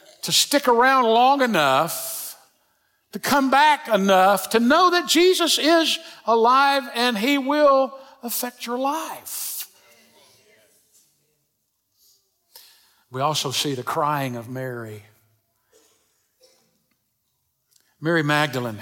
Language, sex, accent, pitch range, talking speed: English, male, American, 125-180 Hz, 95 wpm